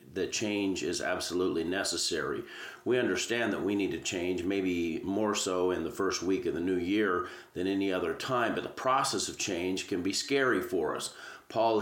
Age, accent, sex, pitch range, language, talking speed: 40-59, American, male, 95-130 Hz, English, 195 wpm